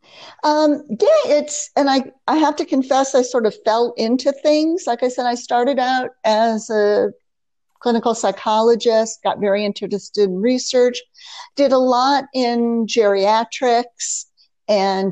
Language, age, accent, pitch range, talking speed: English, 50-69, American, 210-260 Hz, 145 wpm